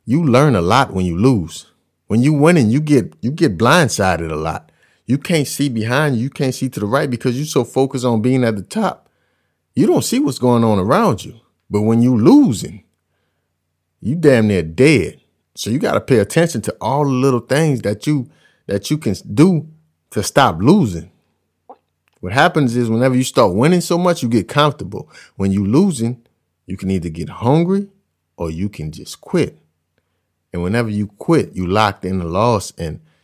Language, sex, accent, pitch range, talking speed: English, male, American, 85-130 Hz, 195 wpm